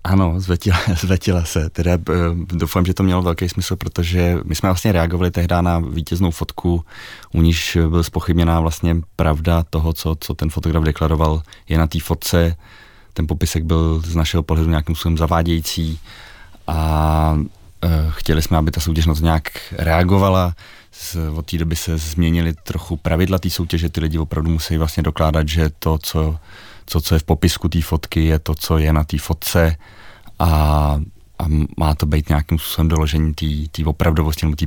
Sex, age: male, 30-49